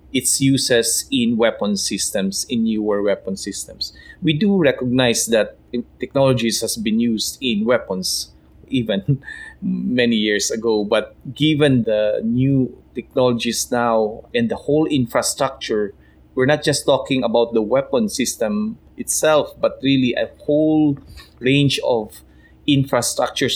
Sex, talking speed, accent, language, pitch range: male, 125 wpm, Filipino, English, 115-145 Hz